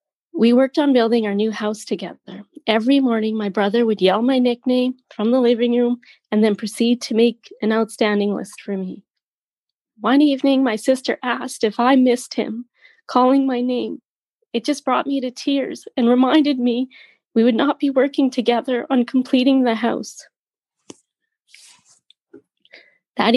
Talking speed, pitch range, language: 160 wpm, 210-260 Hz, English